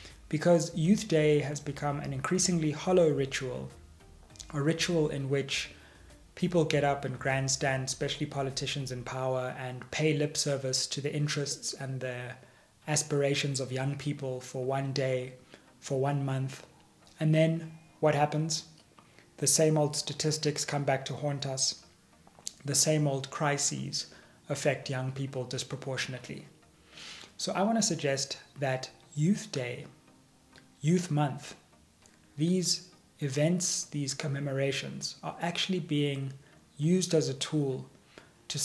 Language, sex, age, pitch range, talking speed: English, male, 20-39, 130-155 Hz, 130 wpm